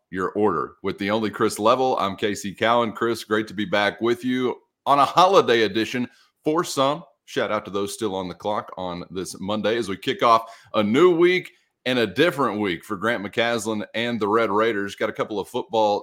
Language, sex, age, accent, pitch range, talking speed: English, male, 30-49, American, 100-120 Hz, 215 wpm